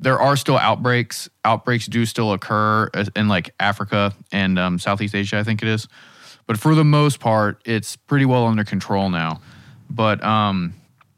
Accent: American